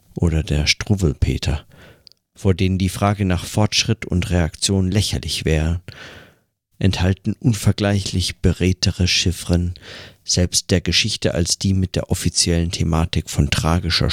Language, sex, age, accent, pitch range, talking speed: German, male, 50-69, German, 85-100 Hz, 120 wpm